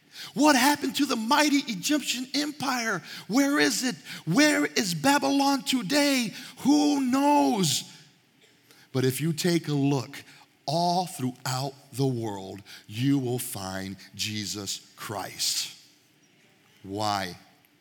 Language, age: English, 40-59